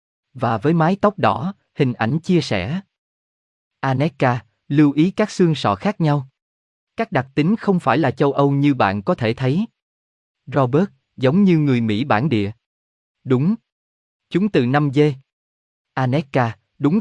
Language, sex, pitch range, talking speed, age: Vietnamese, male, 110-160 Hz, 155 wpm, 20-39